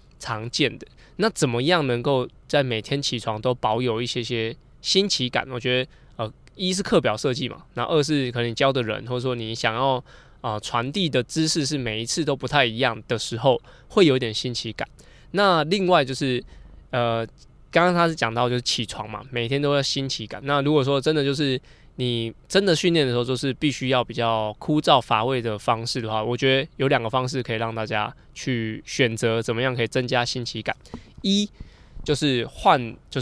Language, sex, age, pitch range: Chinese, male, 20-39, 115-145 Hz